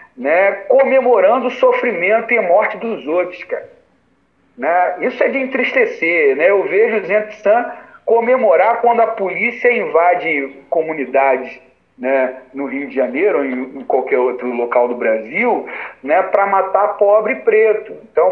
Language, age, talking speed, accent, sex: Portuguese, 40-59, 145 wpm, Brazilian, male